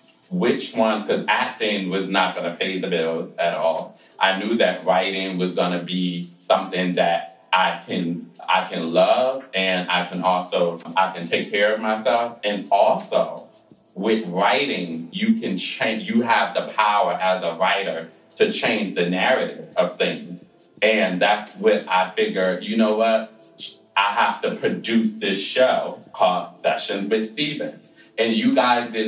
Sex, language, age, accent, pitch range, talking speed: male, English, 30-49, American, 95-110 Hz, 160 wpm